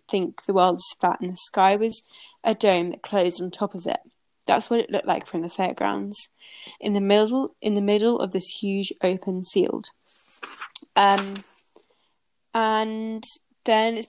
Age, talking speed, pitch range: 10-29, 165 wpm, 190-230 Hz